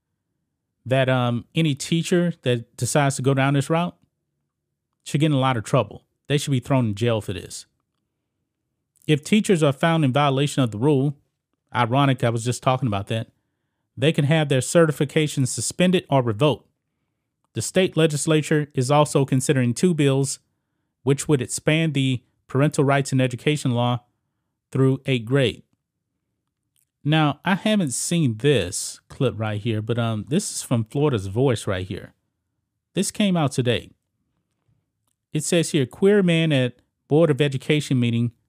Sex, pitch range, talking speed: male, 120-150 Hz, 155 wpm